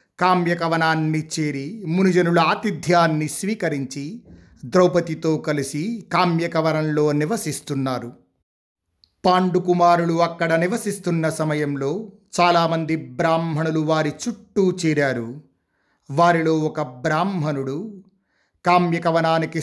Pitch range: 155-195 Hz